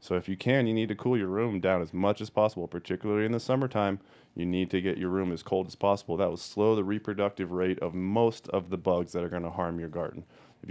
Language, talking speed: English, 270 wpm